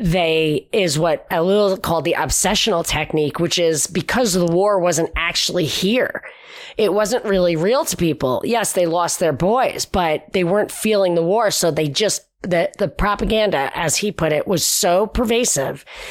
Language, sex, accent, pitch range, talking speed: English, female, American, 170-215 Hz, 175 wpm